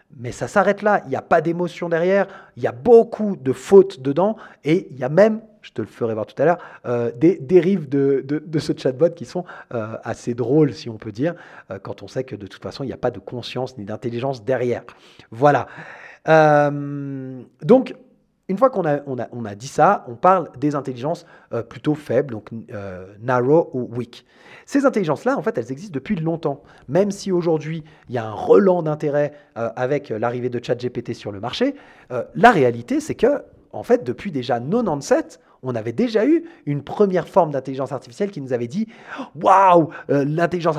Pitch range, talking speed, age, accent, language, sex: 125-185 Hz, 205 wpm, 30-49, French, French, male